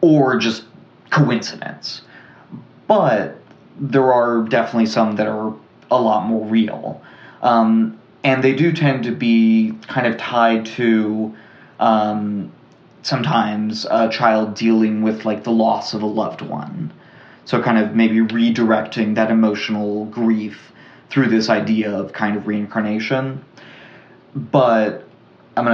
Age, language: 20-39, English